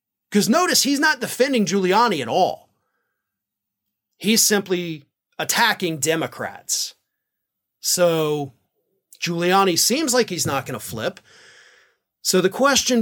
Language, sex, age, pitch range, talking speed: English, male, 30-49, 175-230 Hz, 110 wpm